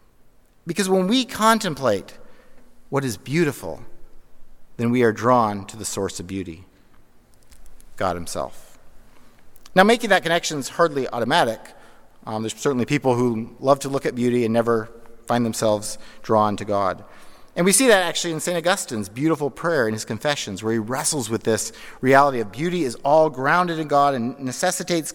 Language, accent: English, American